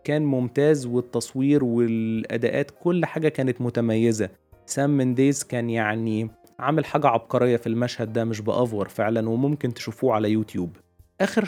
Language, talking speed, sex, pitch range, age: Arabic, 135 wpm, male, 115-140 Hz, 20-39